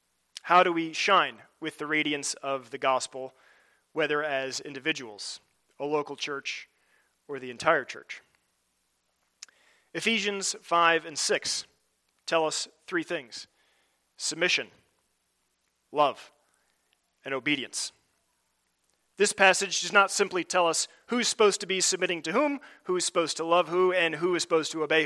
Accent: American